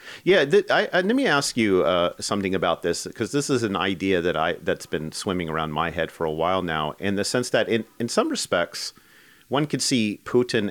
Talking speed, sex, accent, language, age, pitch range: 230 wpm, male, American, English, 40-59, 85-120 Hz